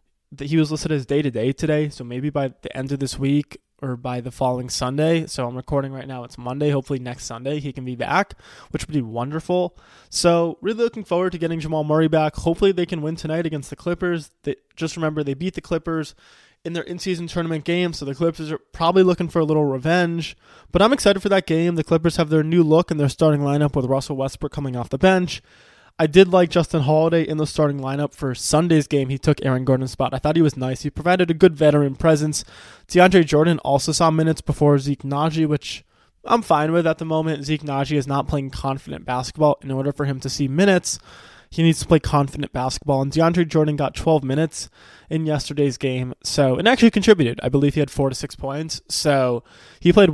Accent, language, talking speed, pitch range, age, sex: American, English, 225 wpm, 135-165 Hz, 20-39, male